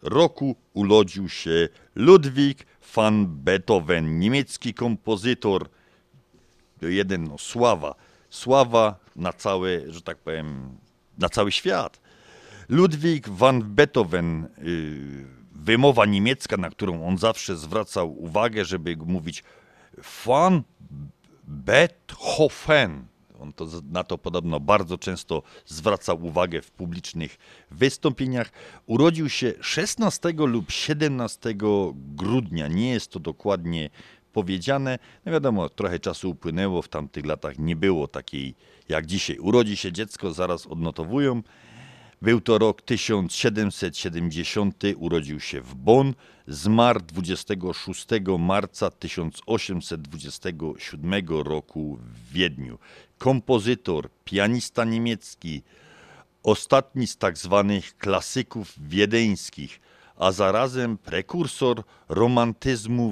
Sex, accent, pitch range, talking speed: male, native, 85-120 Hz, 100 wpm